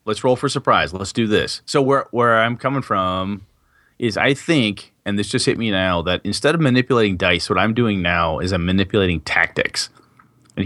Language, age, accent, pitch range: English, 30-49, American, 95-125 Hz